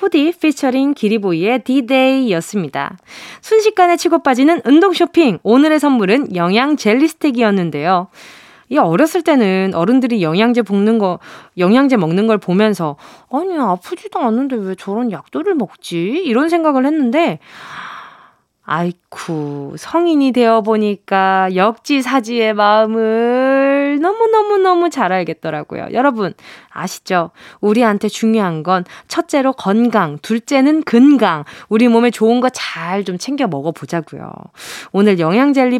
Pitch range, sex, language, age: 190-280 Hz, female, Korean, 20-39